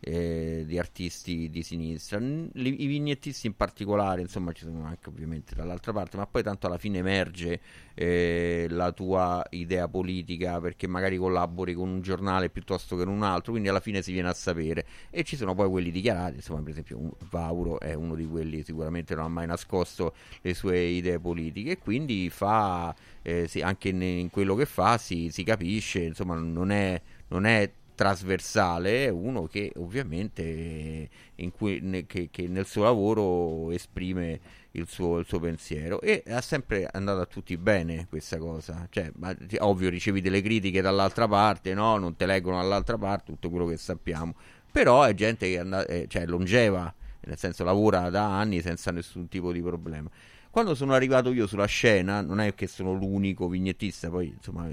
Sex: male